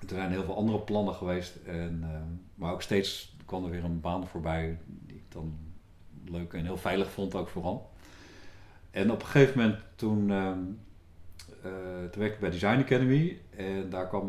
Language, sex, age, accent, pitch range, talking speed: Dutch, male, 50-69, Dutch, 85-100 Hz, 195 wpm